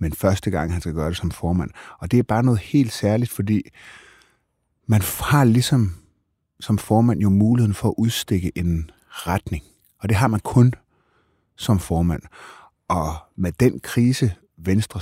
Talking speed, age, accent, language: 165 wpm, 30-49, native, Danish